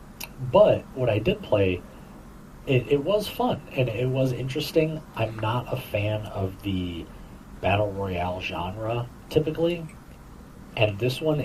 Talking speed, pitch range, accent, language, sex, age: 135 wpm, 95-125 Hz, American, English, male, 30-49